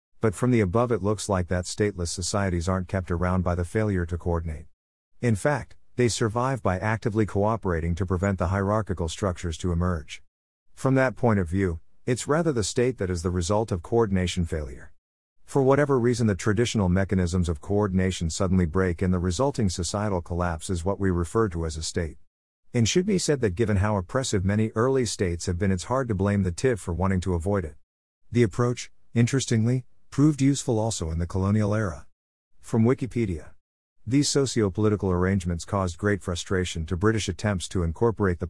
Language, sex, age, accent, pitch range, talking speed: English, male, 50-69, American, 90-110 Hz, 185 wpm